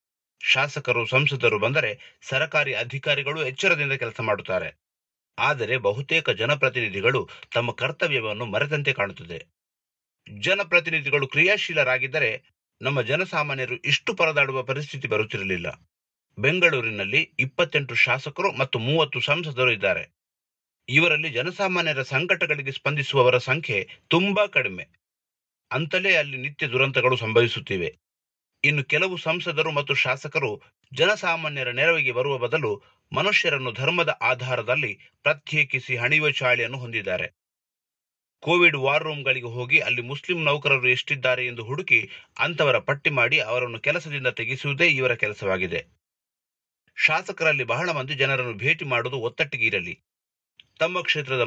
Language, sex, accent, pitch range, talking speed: Kannada, male, native, 125-155 Hz, 95 wpm